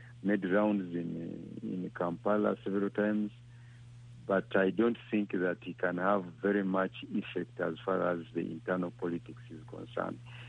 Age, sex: 60-79, male